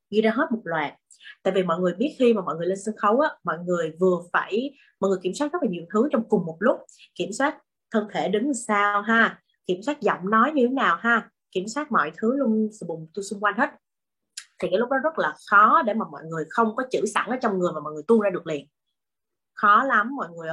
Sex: female